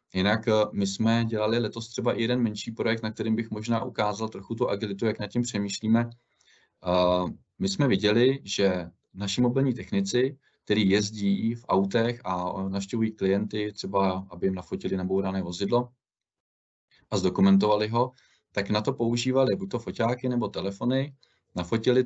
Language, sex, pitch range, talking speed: Czech, male, 100-120 Hz, 150 wpm